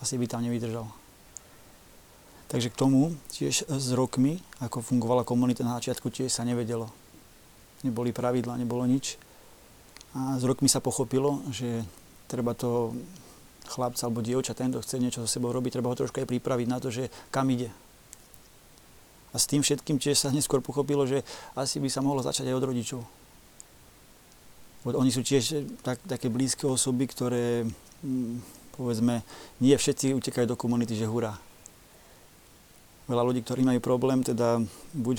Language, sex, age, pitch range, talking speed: Slovak, male, 30-49, 120-130 Hz, 150 wpm